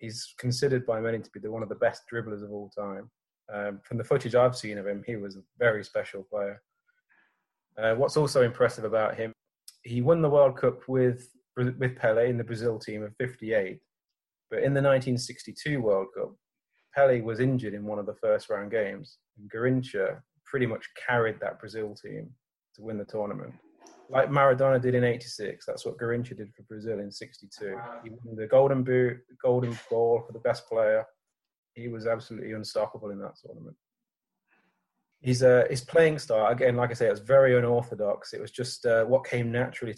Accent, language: British, English